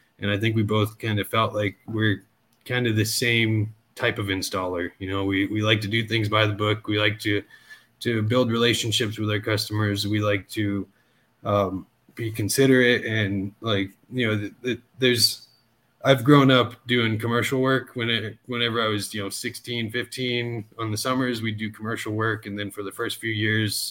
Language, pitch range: English, 105-120 Hz